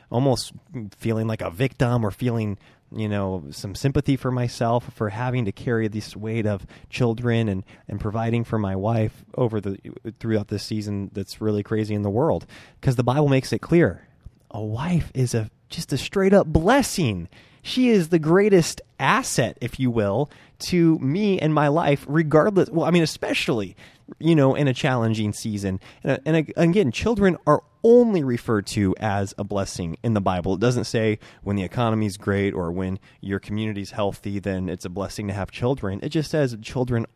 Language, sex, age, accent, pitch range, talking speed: English, male, 20-39, American, 105-140 Hz, 185 wpm